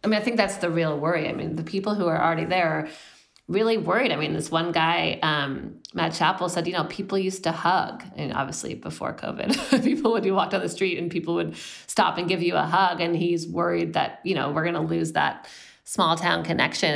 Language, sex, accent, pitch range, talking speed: English, female, American, 165-195 Hz, 235 wpm